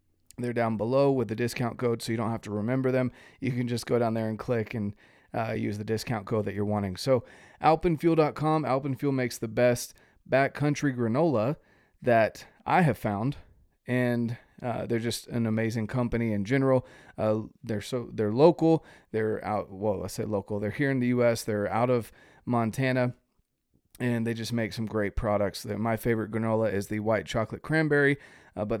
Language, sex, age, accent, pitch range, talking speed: English, male, 30-49, American, 110-130 Hz, 185 wpm